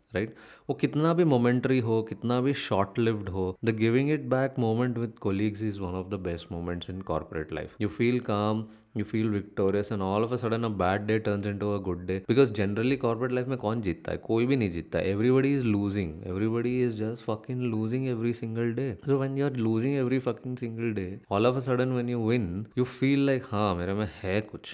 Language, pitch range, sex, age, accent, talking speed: English, 90-115 Hz, male, 30-49, Indian, 190 wpm